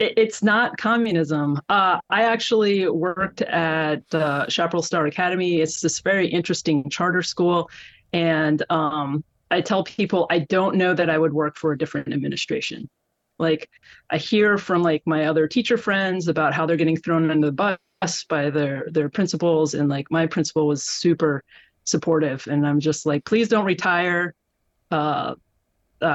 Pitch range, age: 155-185 Hz, 30-49